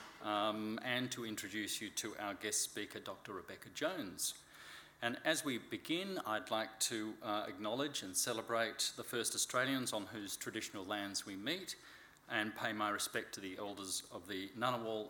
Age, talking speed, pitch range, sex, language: 40-59, 165 wpm, 105-125 Hz, male, English